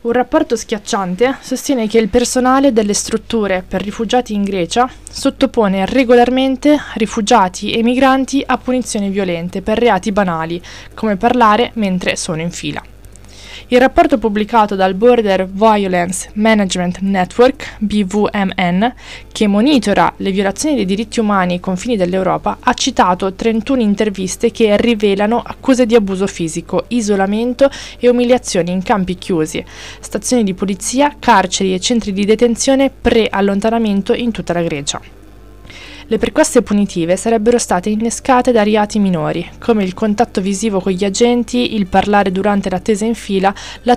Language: Italian